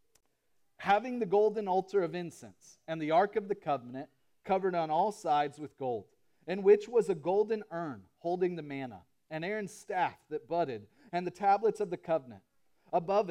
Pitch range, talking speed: 160-205 Hz, 175 wpm